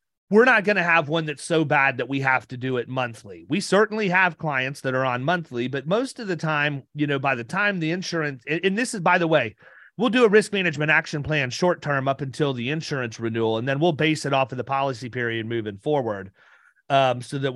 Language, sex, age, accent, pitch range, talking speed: English, male, 30-49, American, 130-165 Hz, 245 wpm